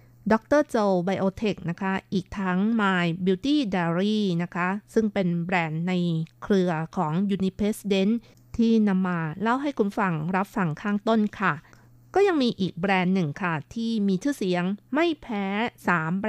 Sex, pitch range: female, 175-215 Hz